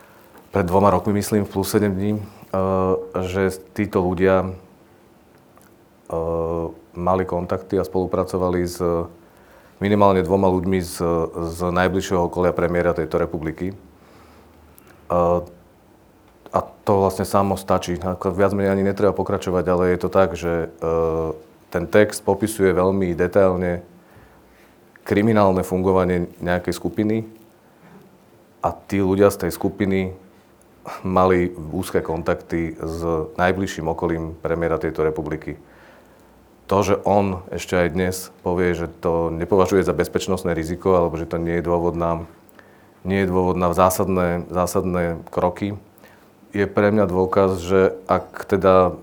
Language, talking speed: Slovak, 120 wpm